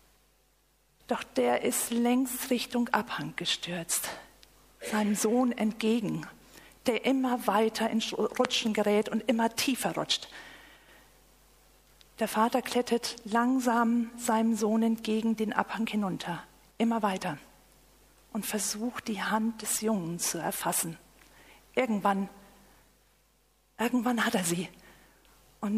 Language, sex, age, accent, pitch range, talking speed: German, female, 50-69, German, 195-235 Hz, 105 wpm